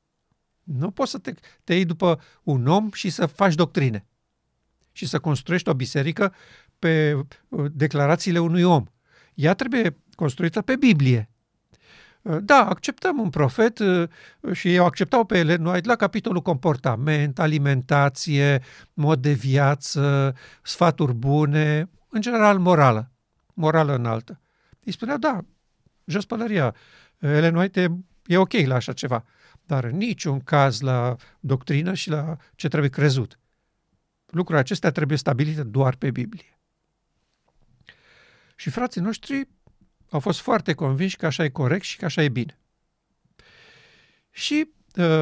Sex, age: male, 50-69